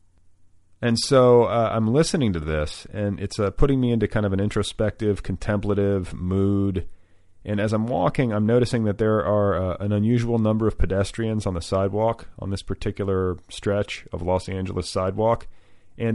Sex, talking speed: male, 170 wpm